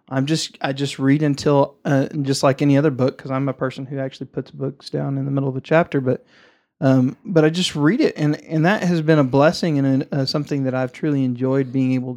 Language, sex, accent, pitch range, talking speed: English, male, American, 135-165 Hz, 250 wpm